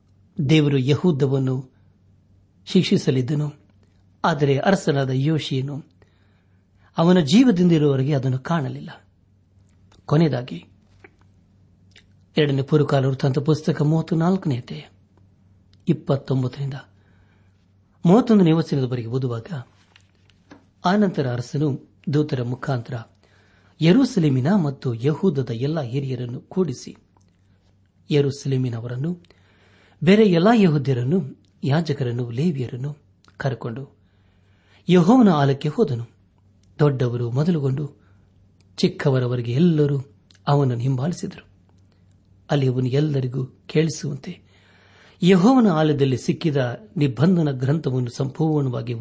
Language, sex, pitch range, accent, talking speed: Kannada, male, 100-155 Hz, native, 65 wpm